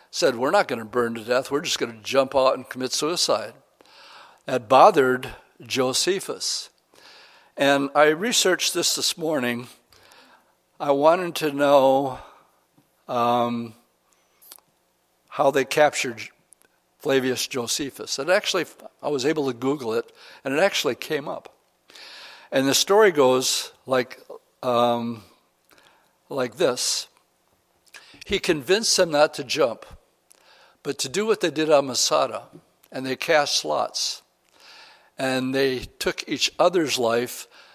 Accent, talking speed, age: American, 130 wpm, 60-79